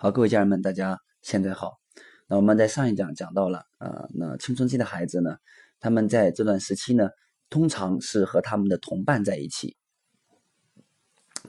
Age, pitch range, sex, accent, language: 20-39, 100-130 Hz, male, native, Chinese